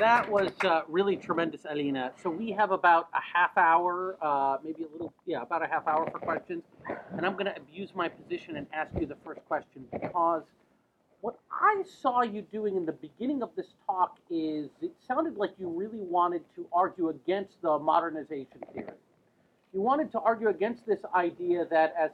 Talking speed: 190 wpm